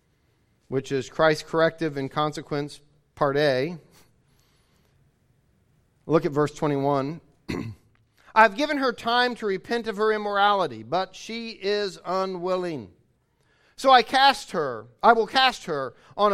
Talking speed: 125 wpm